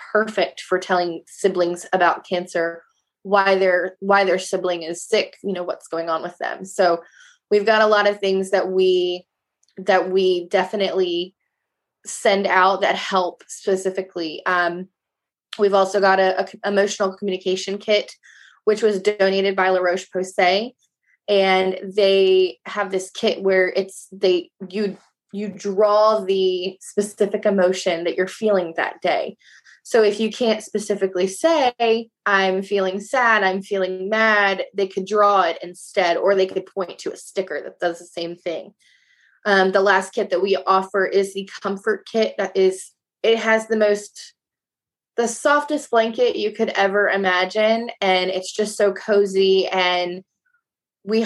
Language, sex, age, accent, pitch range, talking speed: English, female, 20-39, American, 185-210 Hz, 155 wpm